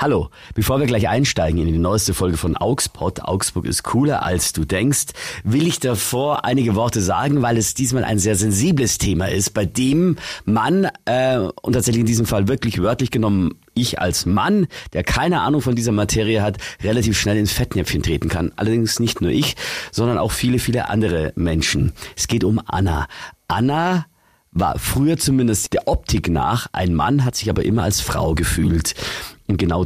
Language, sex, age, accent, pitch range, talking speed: German, male, 40-59, German, 90-115 Hz, 180 wpm